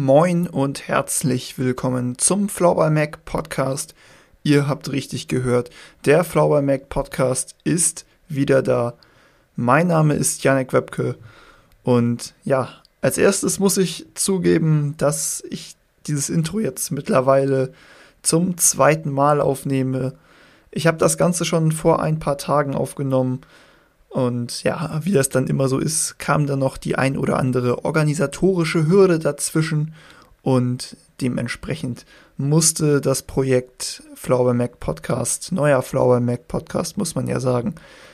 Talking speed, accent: 135 wpm, German